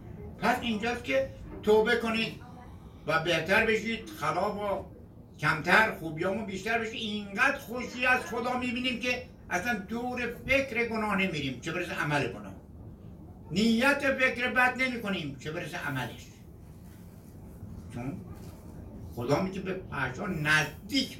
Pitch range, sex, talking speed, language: 135-215 Hz, male, 120 wpm, Persian